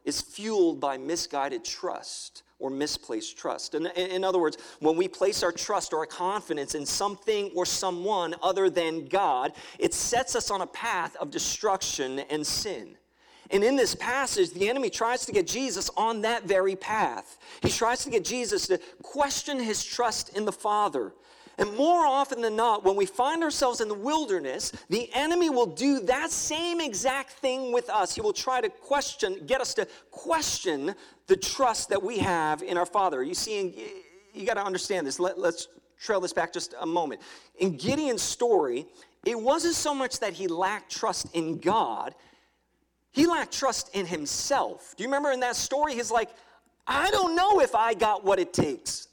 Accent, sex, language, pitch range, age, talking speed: American, male, English, 185-305 Hz, 40-59, 185 wpm